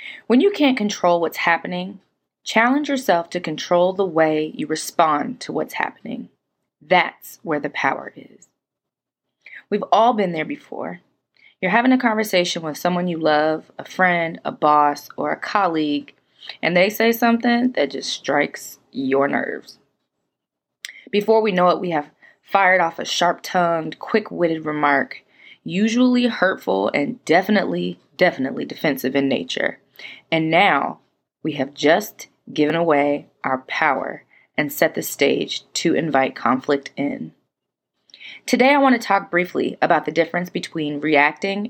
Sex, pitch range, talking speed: female, 155-215 Hz, 140 wpm